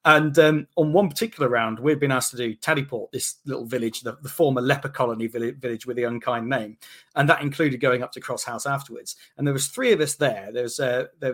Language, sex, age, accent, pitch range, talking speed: English, male, 30-49, British, 125-155 Hz, 245 wpm